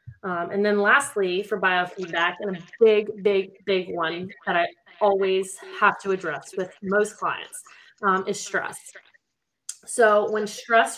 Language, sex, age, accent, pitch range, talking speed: English, female, 20-39, American, 190-225 Hz, 150 wpm